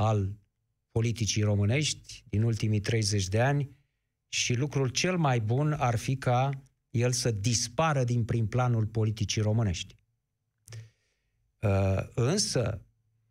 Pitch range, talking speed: 115-150 Hz, 115 wpm